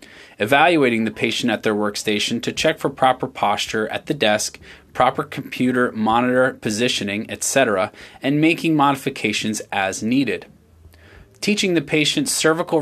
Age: 20-39